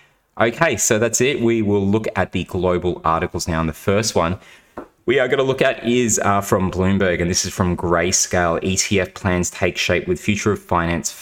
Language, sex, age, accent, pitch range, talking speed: English, male, 20-39, Australian, 85-105 Hz, 210 wpm